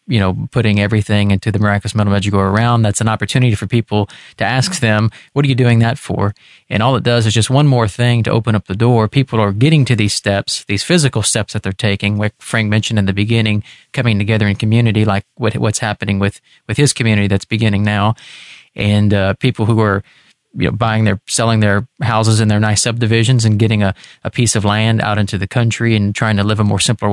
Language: English